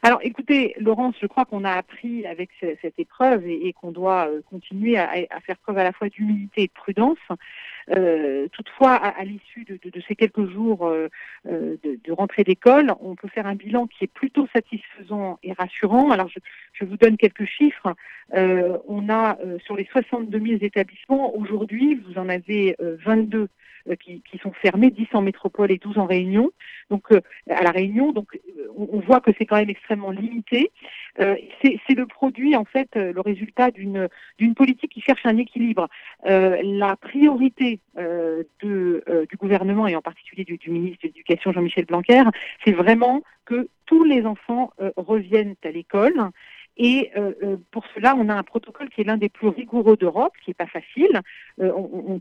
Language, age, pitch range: French, 50-69, 190-245 Hz